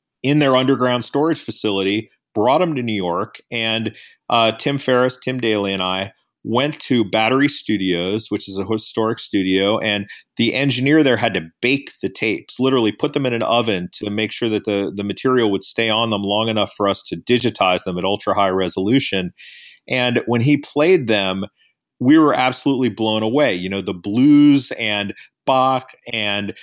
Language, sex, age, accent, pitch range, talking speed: English, male, 40-59, American, 100-125 Hz, 180 wpm